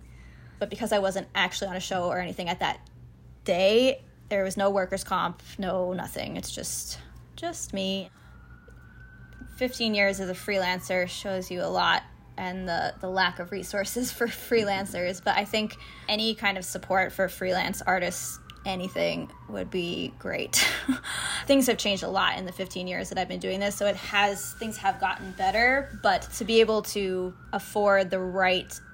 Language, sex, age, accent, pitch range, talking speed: English, female, 20-39, American, 180-215 Hz, 175 wpm